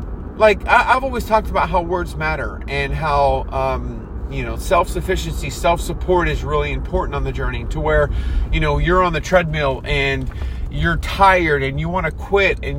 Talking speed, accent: 190 wpm, American